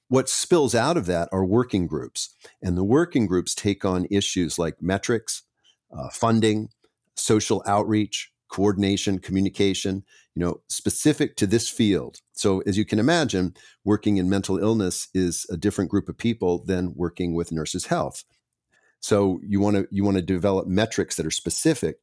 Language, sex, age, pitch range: English, male, 50-69, 90-105 Hz